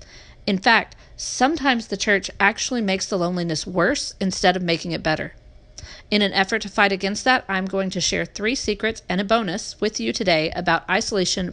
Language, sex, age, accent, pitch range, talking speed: English, female, 40-59, American, 180-220 Hz, 185 wpm